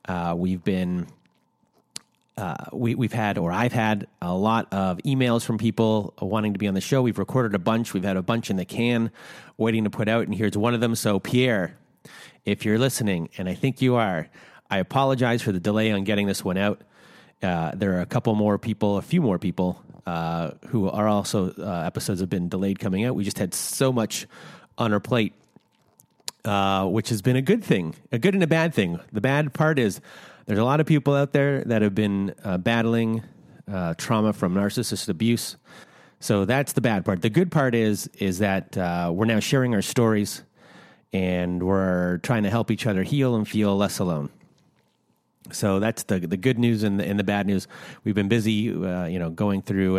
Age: 30-49